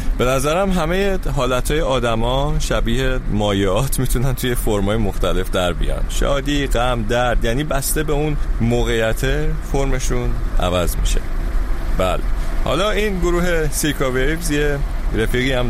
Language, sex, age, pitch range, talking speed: Persian, male, 30-49, 95-130 Hz, 130 wpm